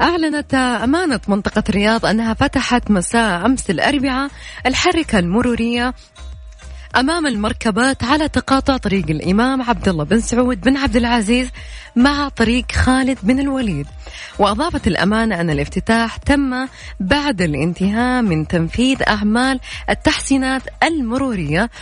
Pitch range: 200-265 Hz